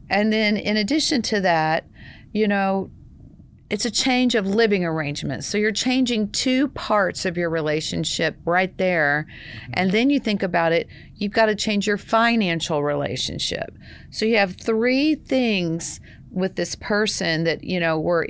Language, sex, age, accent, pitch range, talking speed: English, female, 40-59, American, 165-215 Hz, 160 wpm